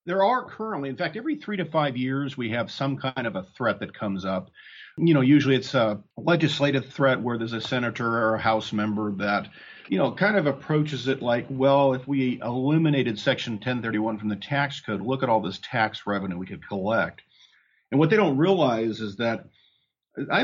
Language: English